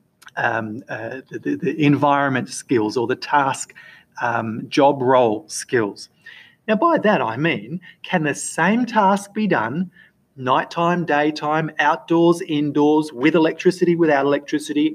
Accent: Australian